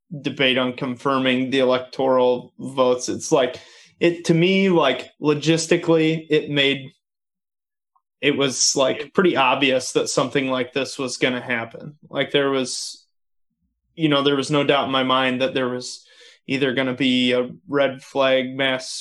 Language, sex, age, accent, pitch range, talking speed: English, male, 20-39, American, 130-155 Hz, 160 wpm